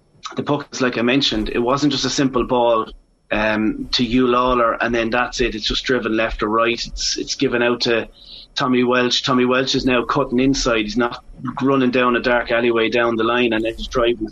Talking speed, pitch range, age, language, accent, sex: 220 wpm, 115-130 Hz, 30-49, English, Irish, male